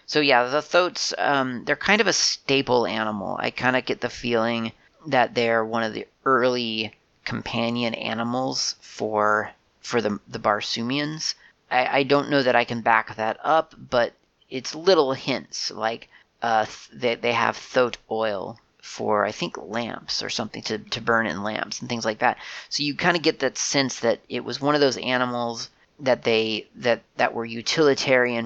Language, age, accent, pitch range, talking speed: English, 30-49, American, 110-130 Hz, 185 wpm